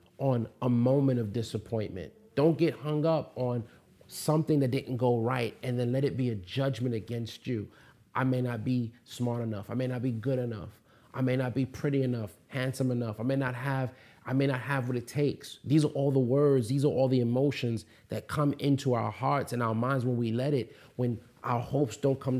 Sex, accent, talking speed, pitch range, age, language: male, American, 220 wpm, 120-145 Hz, 30-49, English